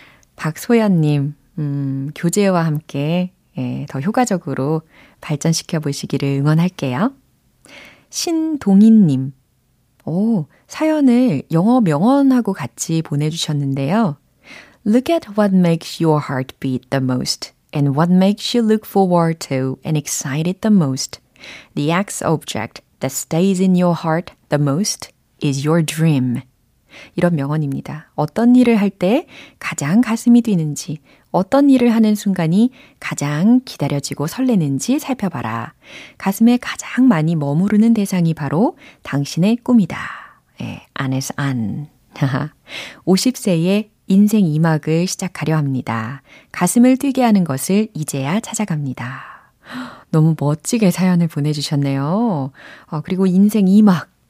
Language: Korean